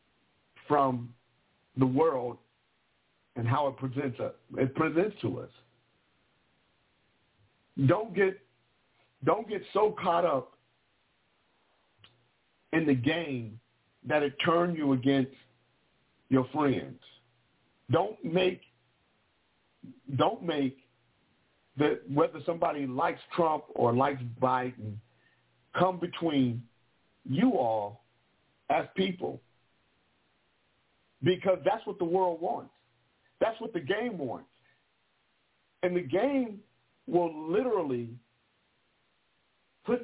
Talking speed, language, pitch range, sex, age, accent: 95 wpm, English, 125-175 Hz, male, 50-69, American